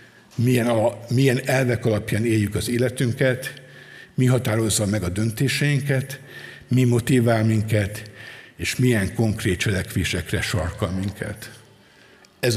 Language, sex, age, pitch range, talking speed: Hungarian, male, 60-79, 105-130 Hz, 110 wpm